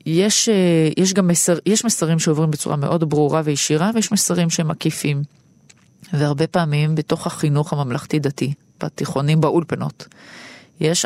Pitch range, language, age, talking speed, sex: 145-170 Hz, Hebrew, 30-49, 125 wpm, female